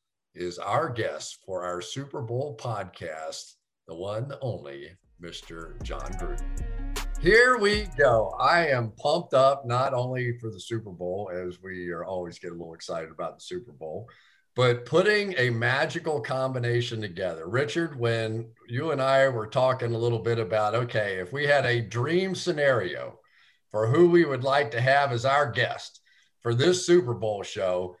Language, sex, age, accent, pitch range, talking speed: English, male, 50-69, American, 115-145 Hz, 165 wpm